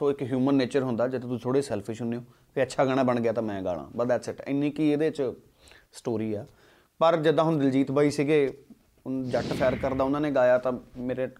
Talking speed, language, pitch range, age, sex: 220 wpm, Punjabi, 120-150 Hz, 30-49, male